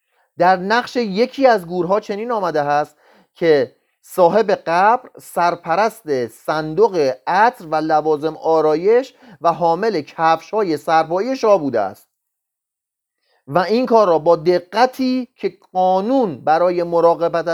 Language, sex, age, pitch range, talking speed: Persian, male, 30-49, 160-220 Hz, 120 wpm